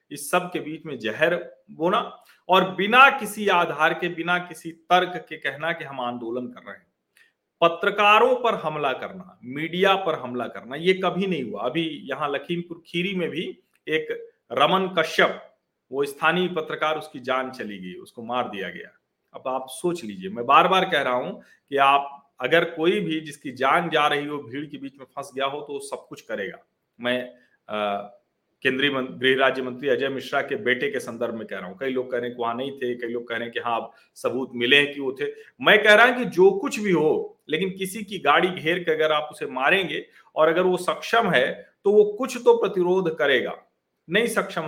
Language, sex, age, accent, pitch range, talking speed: Hindi, male, 40-59, native, 130-185 Hz, 205 wpm